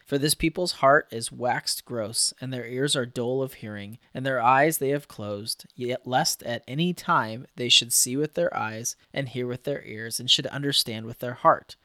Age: 30-49